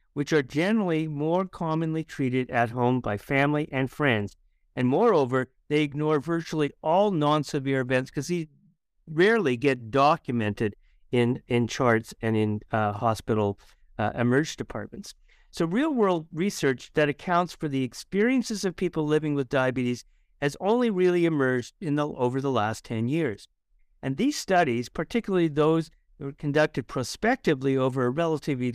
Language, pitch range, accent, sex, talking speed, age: English, 130-175 Hz, American, male, 150 wpm, 50-69